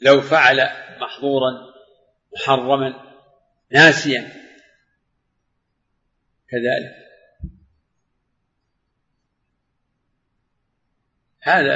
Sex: male